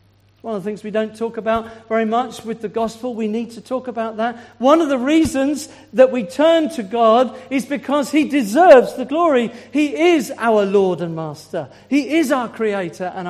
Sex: male